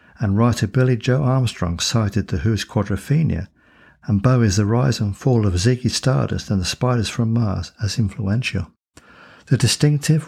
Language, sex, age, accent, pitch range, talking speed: English, male, 60-79, British, 100-125 Hz, 160 wpm